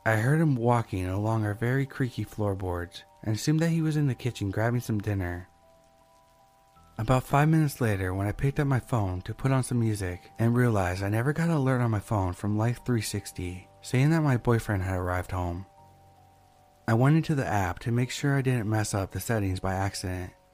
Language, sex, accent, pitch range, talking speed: English, male, American, 95-125 Hz, 205 wpm